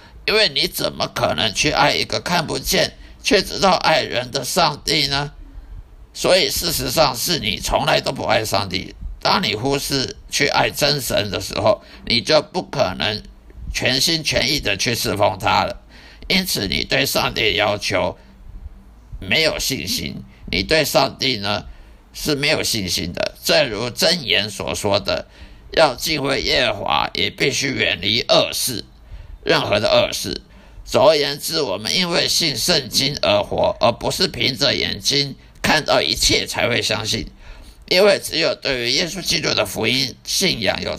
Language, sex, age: Chinese, male, 50-69